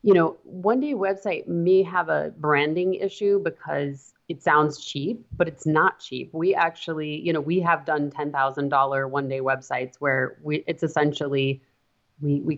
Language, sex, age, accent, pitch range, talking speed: English, female, 30-49, American, 140-175 Hz, 160 wpm